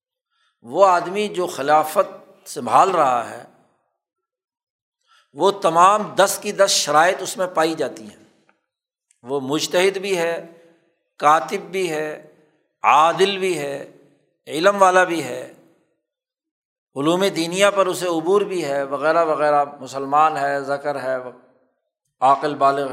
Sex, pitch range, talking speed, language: male, 160-205 Hz, 125 wpm, Urdu